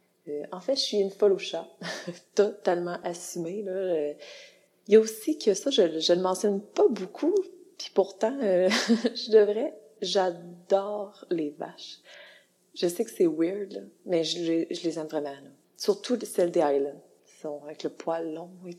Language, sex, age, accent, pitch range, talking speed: French, female, 30-49, Canadian, 175-215 Hz, 175 wpm